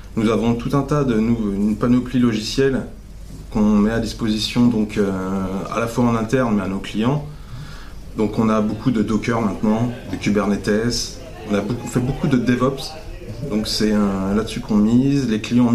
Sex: male